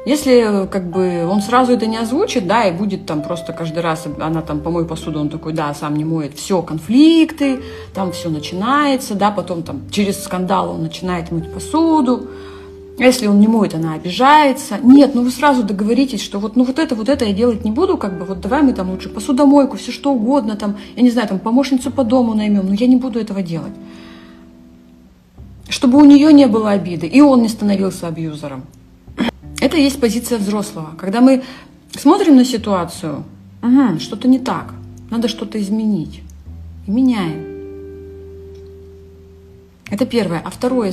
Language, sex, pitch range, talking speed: Russian, female, 165-250 Hz, 175 wpm